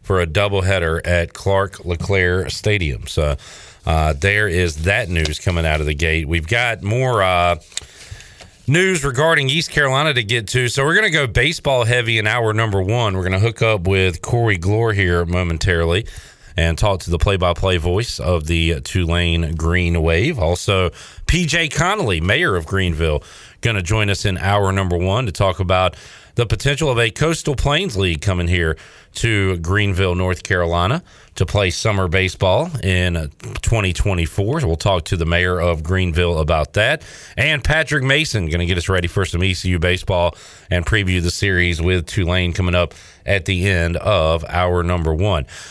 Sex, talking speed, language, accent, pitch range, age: male, 175 wpm, English, American, 85-115 Hz, 40-59